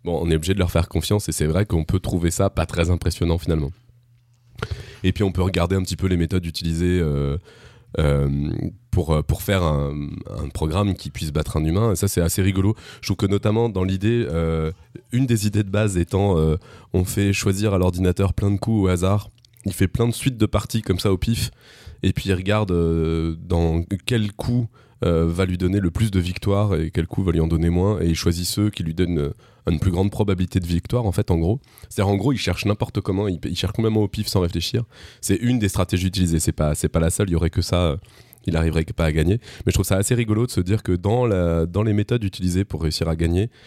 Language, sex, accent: French, male, French